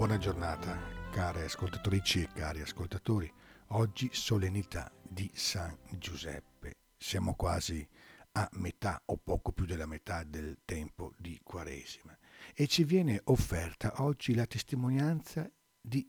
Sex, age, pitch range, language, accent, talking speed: male, 50-69, 90-125 Hz, Italian, native, 125 wpm